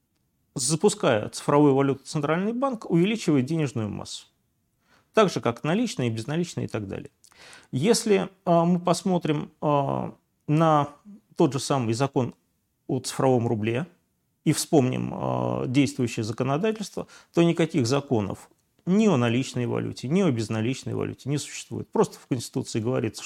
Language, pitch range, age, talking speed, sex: Russian, 120-170 Hz, 40-59, 130 wpm, male